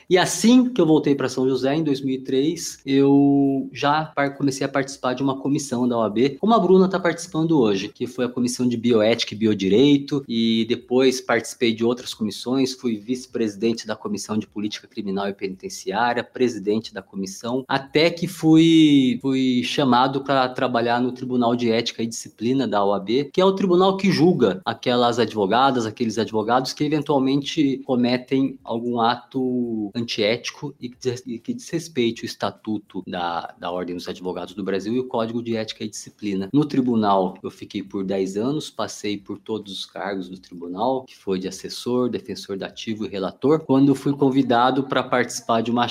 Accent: Brazilian